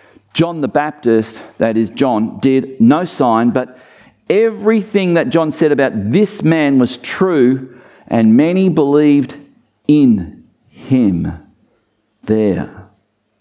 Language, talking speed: English, 110 wpm